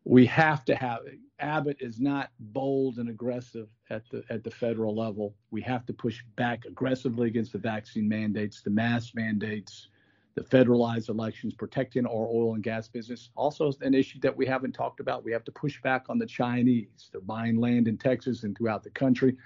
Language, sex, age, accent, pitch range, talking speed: English, male, 50-69, American, 115-135 Hz, 195 wpm